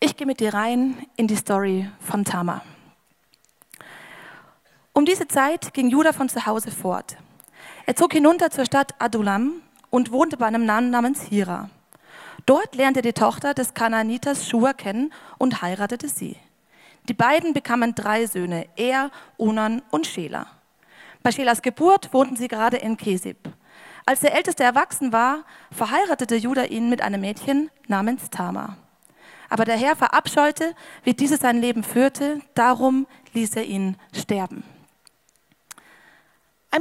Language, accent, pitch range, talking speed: German, German, 220-270 Hz, 145 wpm